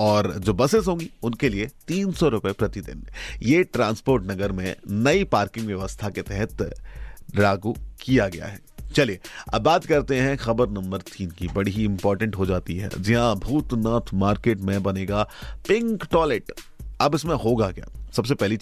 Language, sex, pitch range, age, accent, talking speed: Hindi, male, 95-120 Hz, 30-49, native, 170 wpm